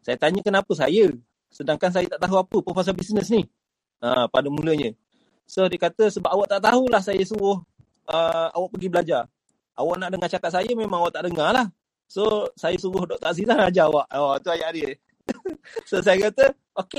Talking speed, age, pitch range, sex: 190 wpm, 30-49, 185-235 Hz, male